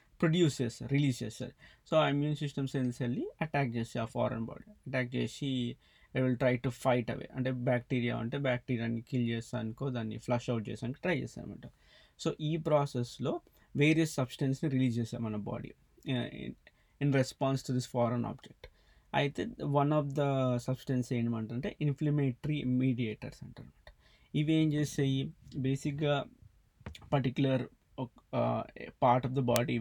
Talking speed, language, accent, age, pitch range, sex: 145 wpm, Telugu, native, 20-39, 120-140 Hz, male